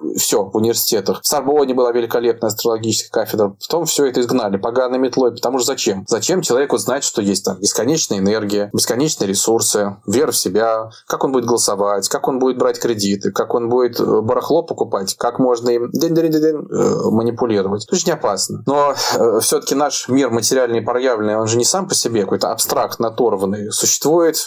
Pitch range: 110-150 Hz